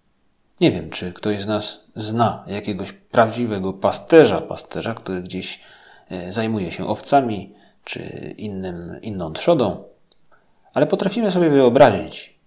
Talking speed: 115 wpm